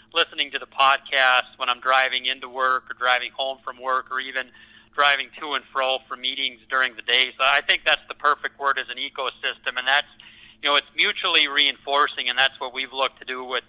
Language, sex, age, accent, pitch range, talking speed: English, male, 30-49, American, 125-140 Hz, 220 wpm